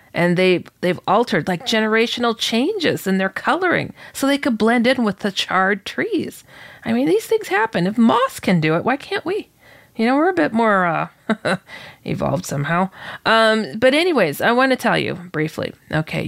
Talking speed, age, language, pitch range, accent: 190 wpm, 30-49, English, 170-225 Hz, American